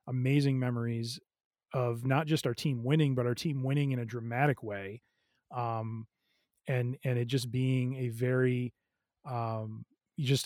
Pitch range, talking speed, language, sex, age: 125-140 Hz, 150 wpm, English, male, 30-49